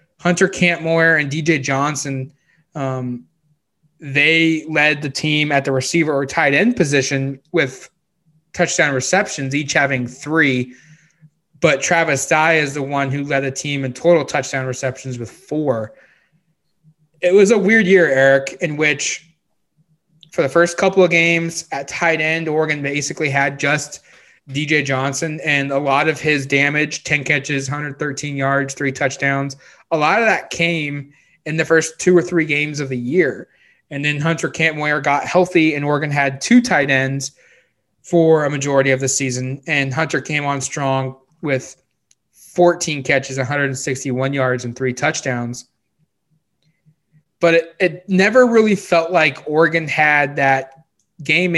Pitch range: 135-165 Hz